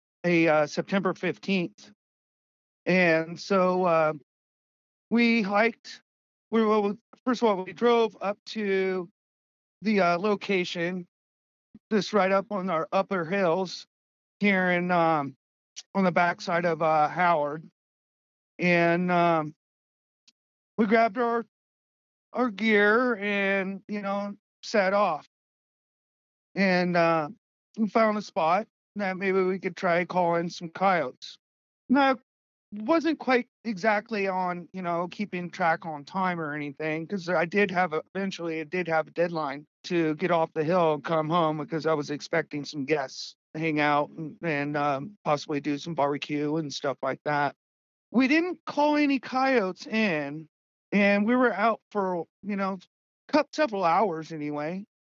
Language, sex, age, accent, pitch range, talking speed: English, male, 40-59, American, 160-205 Hz, 145 wpm